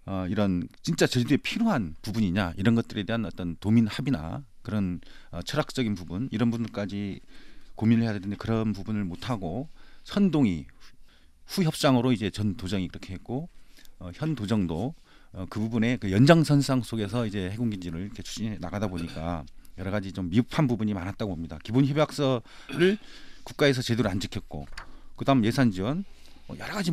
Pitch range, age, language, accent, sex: 90-125 Hz, 40-59, Korean, native, male